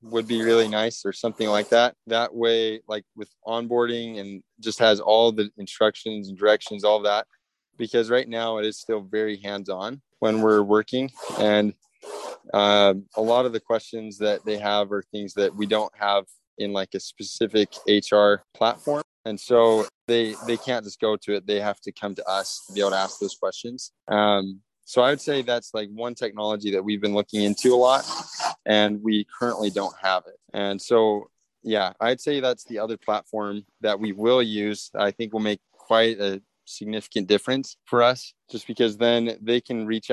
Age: 20-39